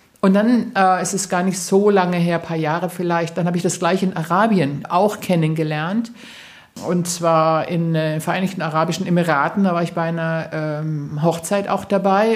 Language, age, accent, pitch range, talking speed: German, 50-69, German, 165-195 Hz, 195 wpm